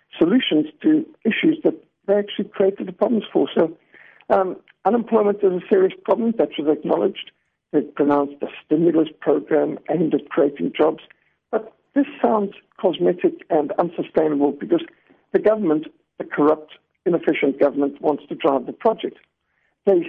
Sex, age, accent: male, 60-79, American